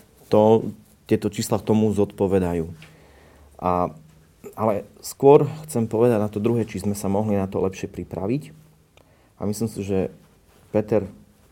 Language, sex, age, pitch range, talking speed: Slovak, male, 30-49, 95-115 Hz, 140 wpm